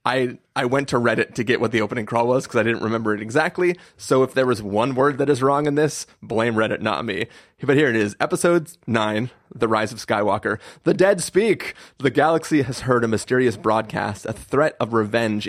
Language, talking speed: English, 220 wpm